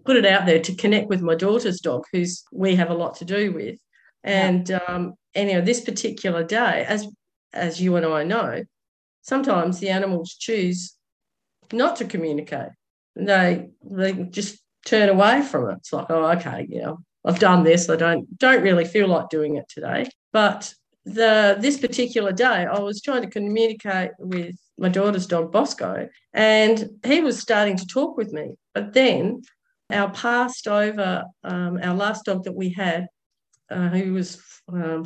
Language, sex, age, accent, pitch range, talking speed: English, female, 50-69, Australian, 175-215 Hz, 175 wpm